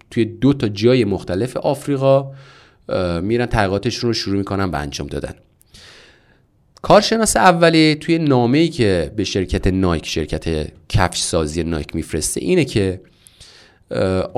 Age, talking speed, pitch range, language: 30-49, 120 wpm, 95-135 Hz, Persian